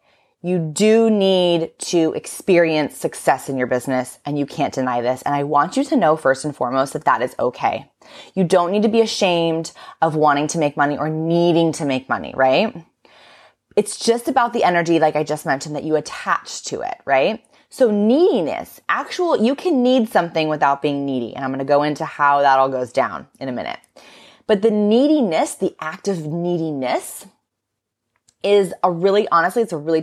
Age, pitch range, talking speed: 20-39, 145-210 Hz, 195 wpm